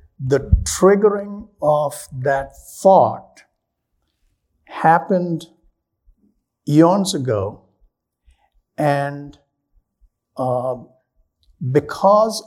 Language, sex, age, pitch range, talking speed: English, male, 50-69, 135-175 Hz, 55 wpm